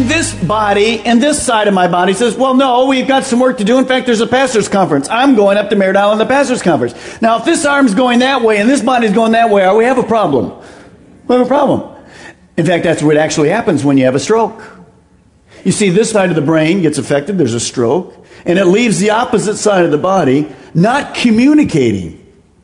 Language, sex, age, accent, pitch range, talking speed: English, male, 50-69, American, 195-255 Hz, 230 wpm